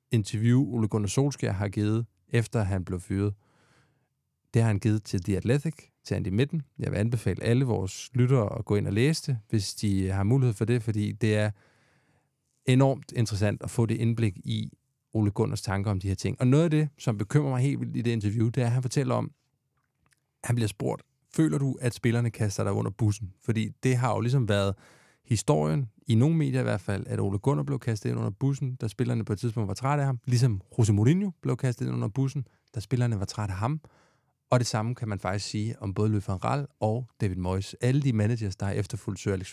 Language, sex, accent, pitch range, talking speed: Danish, male, native, 105-135 Hz, 225 wpm